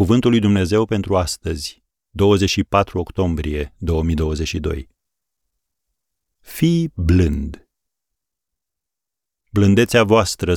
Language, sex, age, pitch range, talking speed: Romanian, male, 40-59, 80-105 Hz, 70 wpm